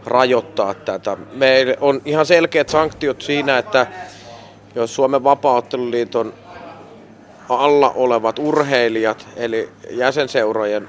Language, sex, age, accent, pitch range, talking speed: Finnish, male, 30-49, native, 110-135 Hz, 95 wpm